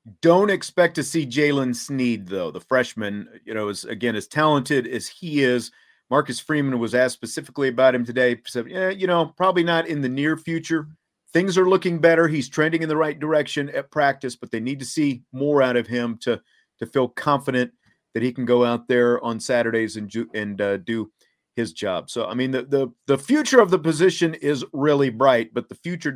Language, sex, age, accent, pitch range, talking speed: English, male, 40-59, American, 115-150 Hz, 210 wpm